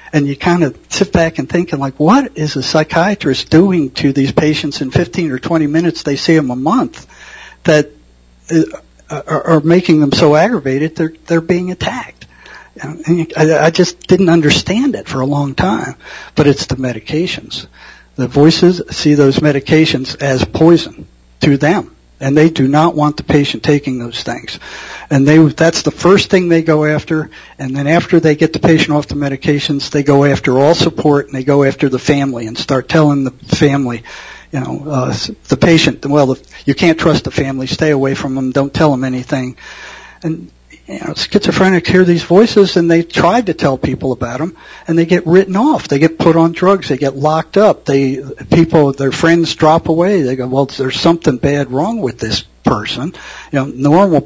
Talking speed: 190 wpm